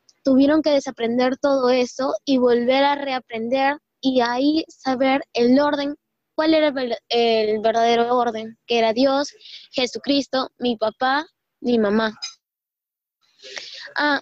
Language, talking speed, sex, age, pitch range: Spanish, 120 wpm, female, 10-29, 230-270 Hz